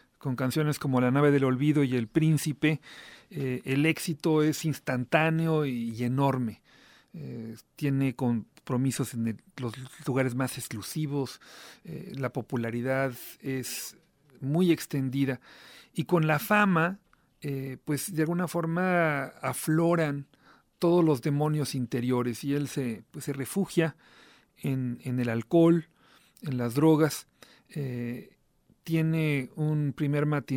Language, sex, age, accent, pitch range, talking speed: English, male, 40-59, Mexican, 130-155 Hz, 120 wpm